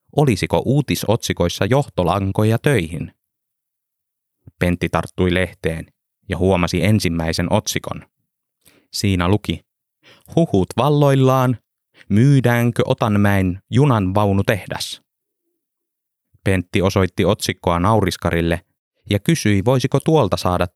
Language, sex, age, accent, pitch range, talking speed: Finnish, male, 30-49, native, 90-125 Hz, 85 wpm